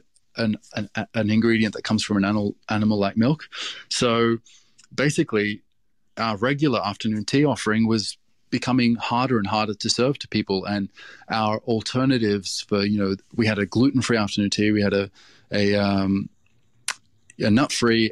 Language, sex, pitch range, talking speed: English, male, 105-120 Hz, 160 wpm